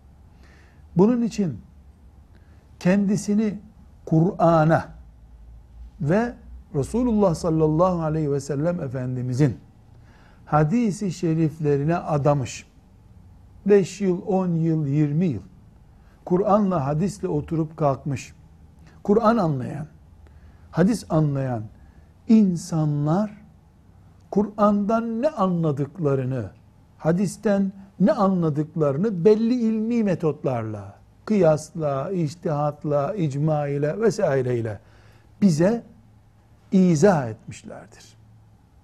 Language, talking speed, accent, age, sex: Turkish, 70 wpm, native, 60-79, male